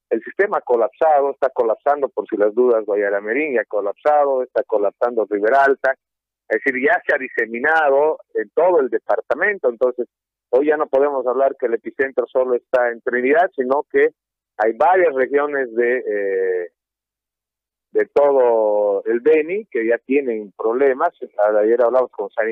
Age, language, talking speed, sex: 40-59, Spanish, 155 wpm, male